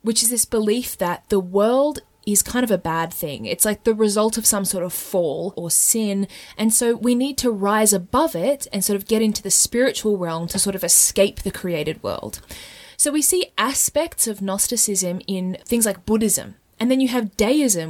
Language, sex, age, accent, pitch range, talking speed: English, female, 20-39, Australian, 185-235 Hz, 210 wpm